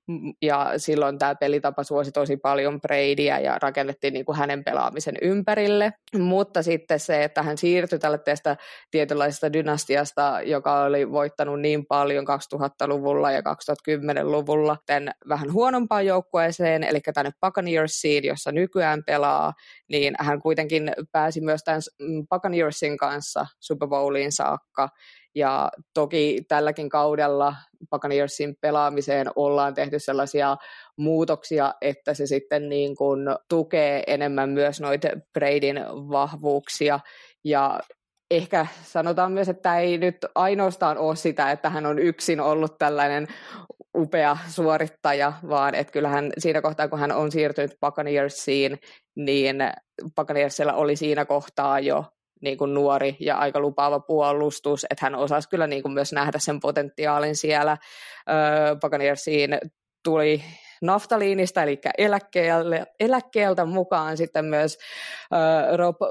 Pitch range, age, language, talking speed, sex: 145-160 Hz, 20-39, Finnish, 120 wpm, female